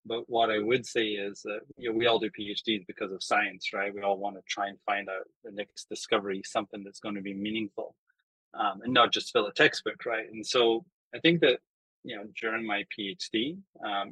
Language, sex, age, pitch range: English, male, 20-39, 100-115 Hz